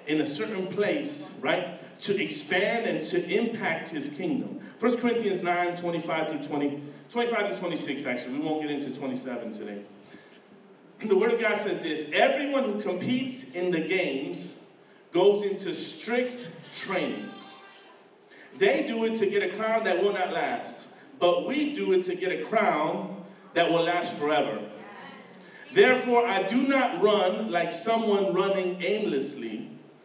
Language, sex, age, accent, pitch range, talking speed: English, male, 40-59, American, 175-225 Hz, 155 wpm